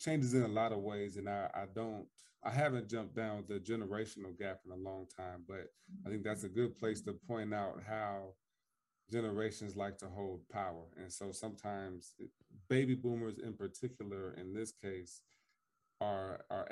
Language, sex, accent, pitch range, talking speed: English, male, American, 95-115 Hz, 175 wpm